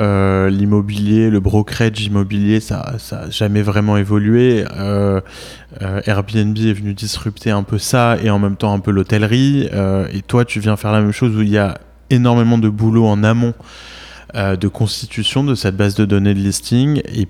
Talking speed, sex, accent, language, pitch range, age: 190 wpm, male, French, French, 95-110 Hz, 20-39